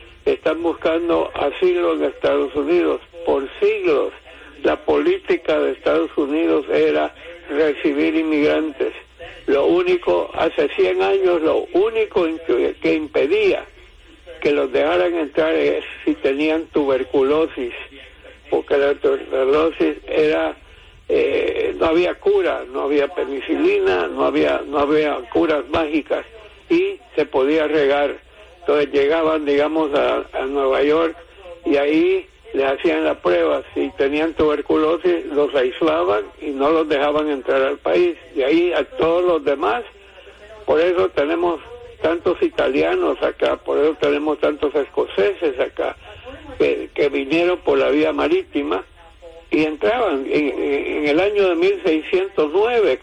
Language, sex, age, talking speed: English, male, 60-79, 125 wpm